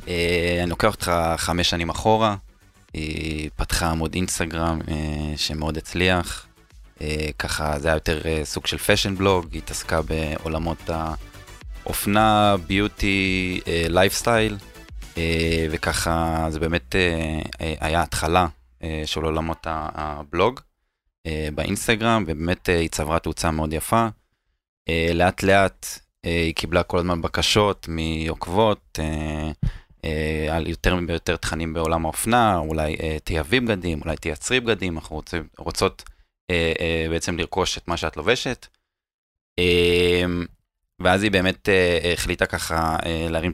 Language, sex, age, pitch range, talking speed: Hebrew, male, 20-39, 80-95 Hz, 130 wpm